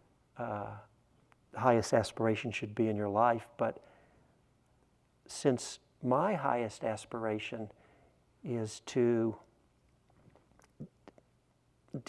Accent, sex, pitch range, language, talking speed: American, male, 115-135 Hz, English, 85 wpm